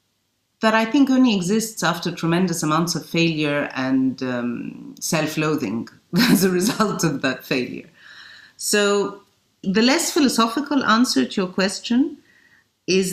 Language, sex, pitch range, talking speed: English, female, 165-230 Hz, 130 wpm